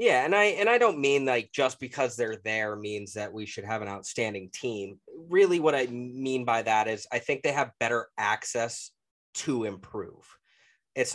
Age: 20-39